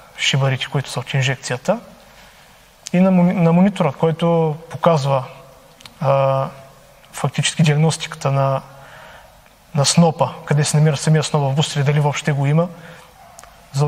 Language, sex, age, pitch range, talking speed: Bulgarian, male, 20-39, 140-165 Hz, 120 wpm